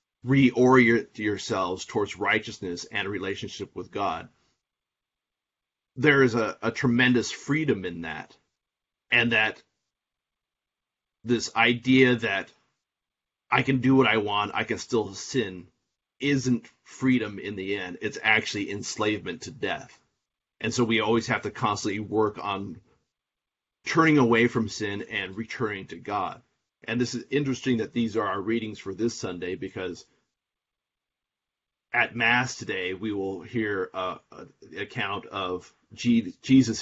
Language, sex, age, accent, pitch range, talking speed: English, male, 30-49, American, 105-125 Hz, 135 wpm